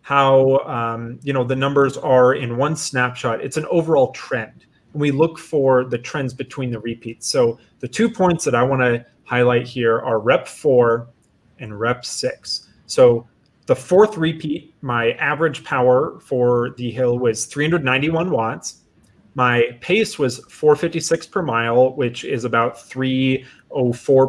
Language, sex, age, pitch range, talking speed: English, male, 30-49, 120-155 Hz, 150 wpm